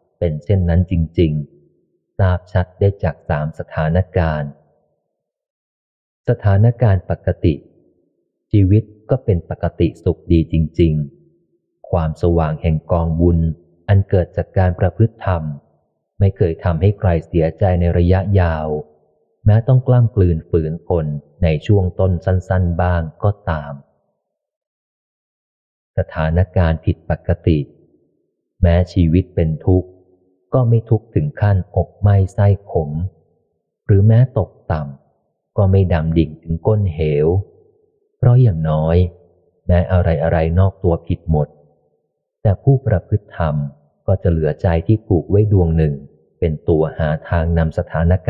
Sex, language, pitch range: male, Thai, 80-100 Hz